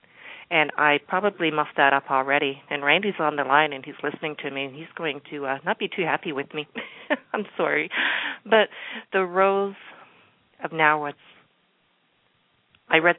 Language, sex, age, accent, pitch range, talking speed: English, female, 40-59, American, 145-175 Hz, 170 wpm